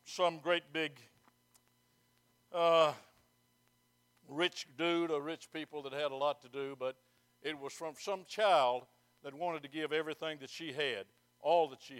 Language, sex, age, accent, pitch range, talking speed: English, male, 60-79, American, 125-150 Hz, 160 wpm